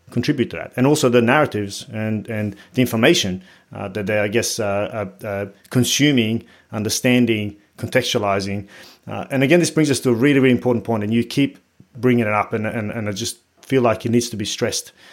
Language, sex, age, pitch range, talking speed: English, male, 30-49, 110-130 Hz, 200 wpm